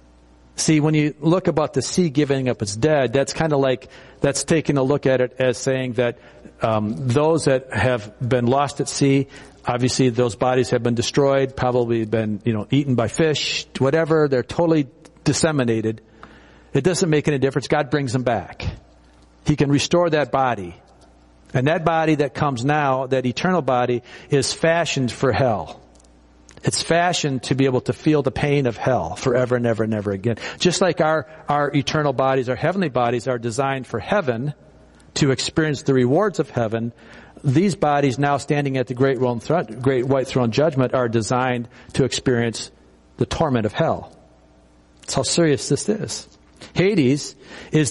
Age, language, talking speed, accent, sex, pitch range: 50-69, English, 175 wpm, American, male, 115-150 Hz